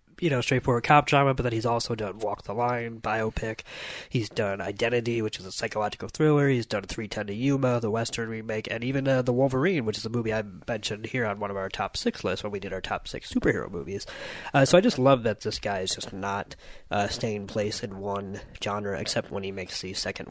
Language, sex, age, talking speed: English, male, 20-39, 235 wpm